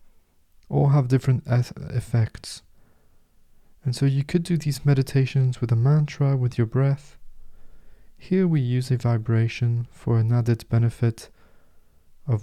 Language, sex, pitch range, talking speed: English, male, 75-125 Hz, 130 wpm